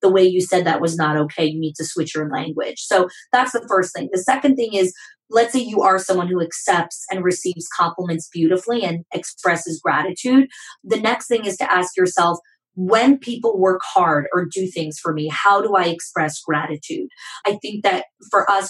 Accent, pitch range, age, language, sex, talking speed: American, 165-200 Hz, 20-39, English, female, 200 wpm